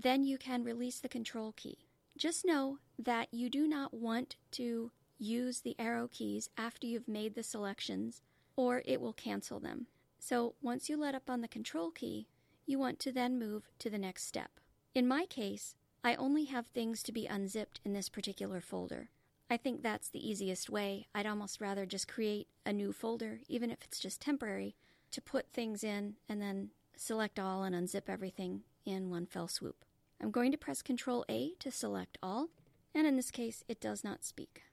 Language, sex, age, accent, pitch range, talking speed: English, female, 40-59, American, 205-260 Hz, 195 wpm